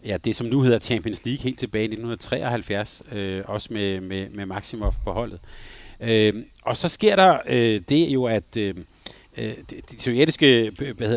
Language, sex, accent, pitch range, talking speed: Danish, male, native, 110-135 Hz, 185 wpm